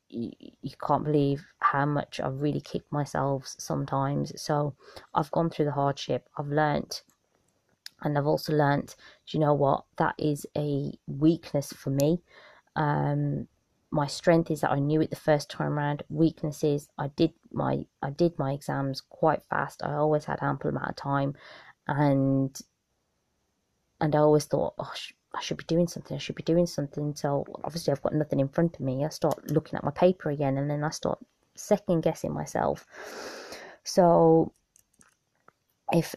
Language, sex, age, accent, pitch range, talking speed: English, female, 20-39, British, 140-165 Hz, 170 wpm